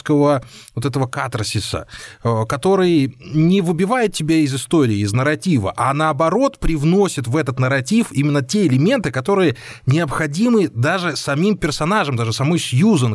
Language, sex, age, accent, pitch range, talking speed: Russian, male, 20-39, native, 125-160 Hz, 130 wpm